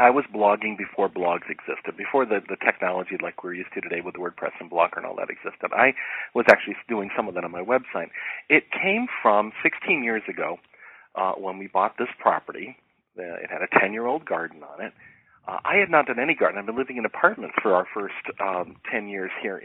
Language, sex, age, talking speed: English, male, 40-59, 220 wpm